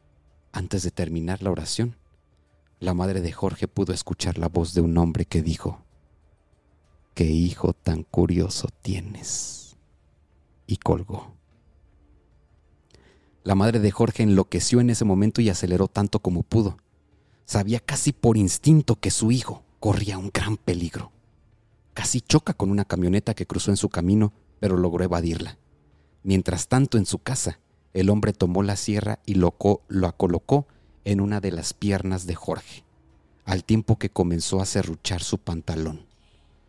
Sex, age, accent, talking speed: male, 40-59, Mexican, 145 wpm